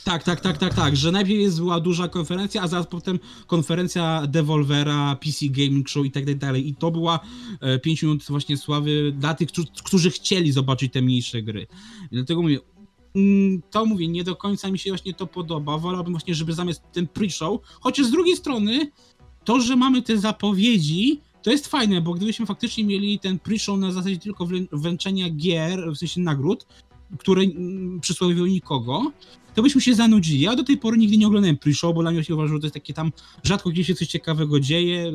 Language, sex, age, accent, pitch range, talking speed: Polish, male, 20-39, native, 150-200 Hz, 195 wpm